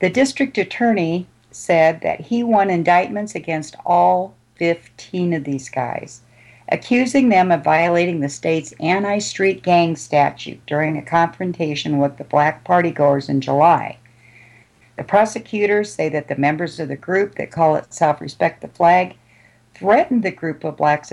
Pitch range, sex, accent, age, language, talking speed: 135-185 Hz, female, American, 50-69, English, 150 wpm